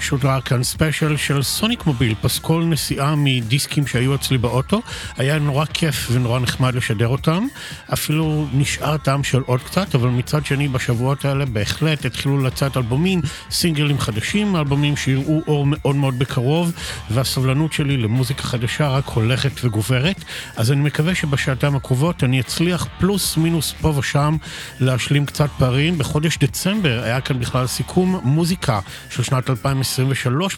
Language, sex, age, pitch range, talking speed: Hebrew, male, 50-69, 120-150 Hz, 140 wpm